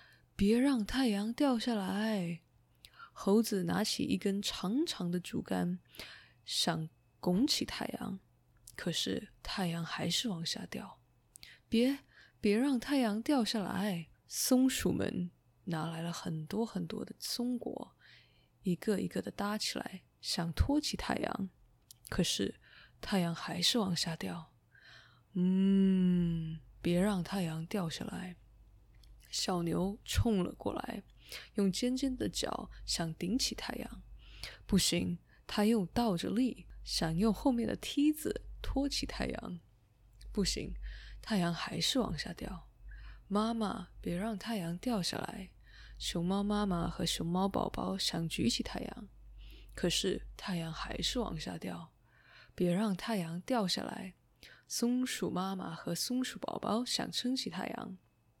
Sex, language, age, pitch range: female, English, 20-39, 170-230 Hz